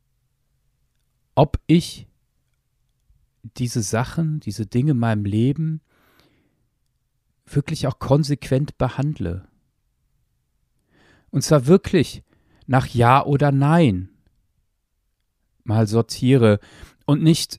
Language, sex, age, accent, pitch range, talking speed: German, male, 40-59, German, 110-145 Hz, 80 wpm